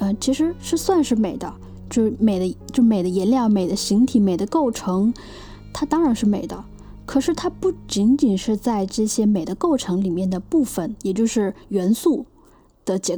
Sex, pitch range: female, 200-275 Hz